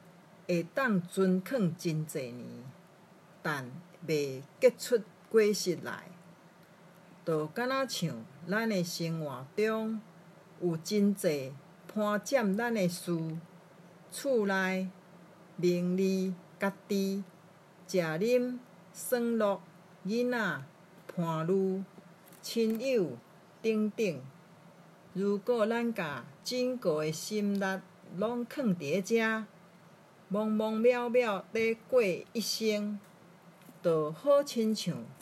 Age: 50-69